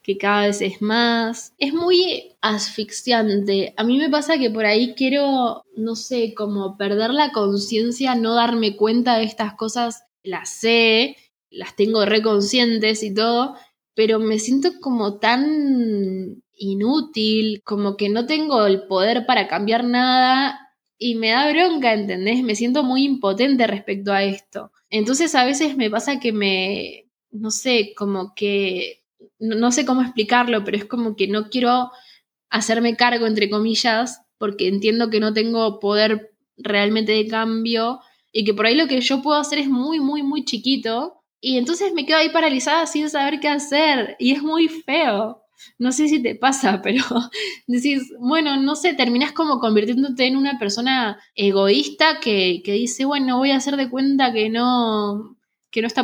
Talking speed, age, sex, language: 165 wpm, 10-29, female, Spanish